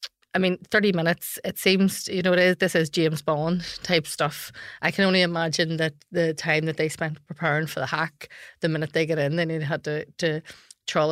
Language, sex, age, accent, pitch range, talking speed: English, female, 30-49, Irish, 165-190 Hz, 205 wpm